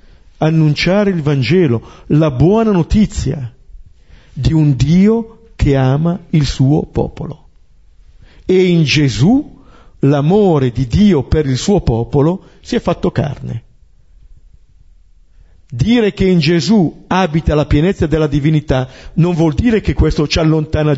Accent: native